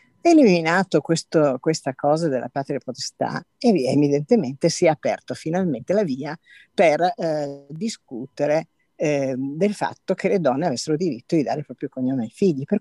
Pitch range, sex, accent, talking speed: 140-195 Hz, female, native, 155 wpm